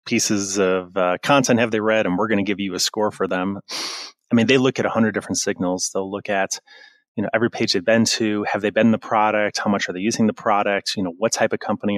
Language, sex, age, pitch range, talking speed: English, male, 30-49, 95-115 Hz, 265 wpm